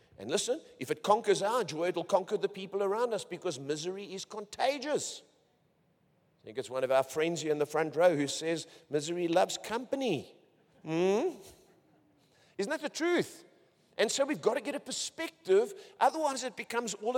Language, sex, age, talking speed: English, male, 50-69, 180 wpm